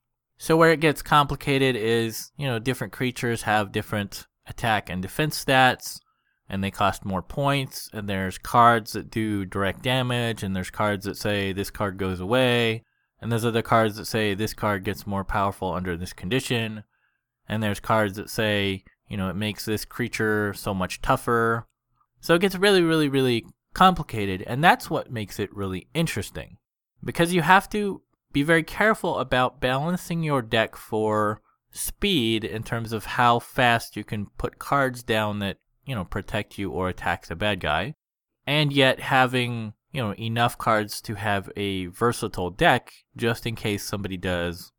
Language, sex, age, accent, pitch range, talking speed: English, male, 20-39, American, 100-125 Hz, 175 wpm